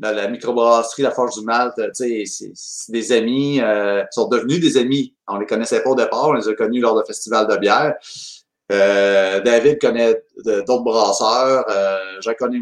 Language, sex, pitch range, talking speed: French, male, 110-140 Hz, 195 wpm